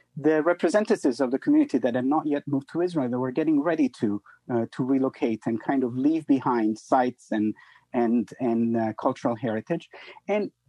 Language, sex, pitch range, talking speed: English, male, 125-200 Hz, 185 wpm